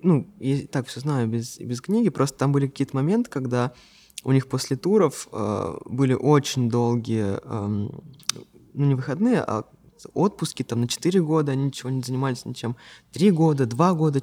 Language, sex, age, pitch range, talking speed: Russian, male, 20-39, 120-155 Hz, 175 wpm